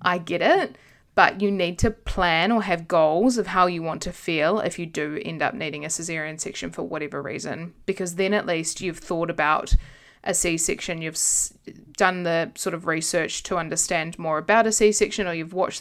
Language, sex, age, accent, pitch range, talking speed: English, female, 20-39, Australian, 165-205 Hz, 200 wpm